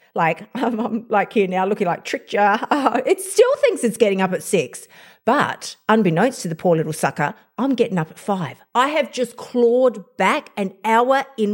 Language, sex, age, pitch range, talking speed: English, female, 50-69, 205-270 Hz, 185 wpm